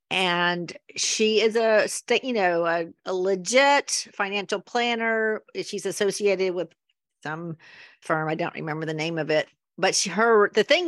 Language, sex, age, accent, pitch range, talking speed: English, female, 50-69, American, 180-230 Hz, 155 wpm